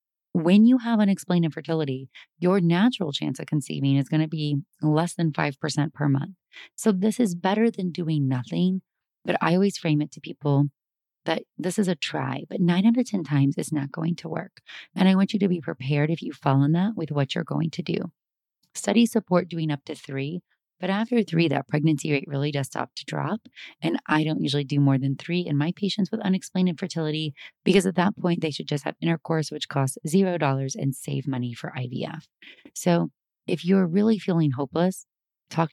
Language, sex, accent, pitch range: English, female, American, 150-190 Hz